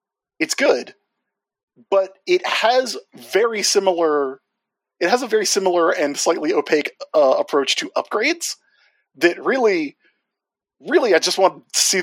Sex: male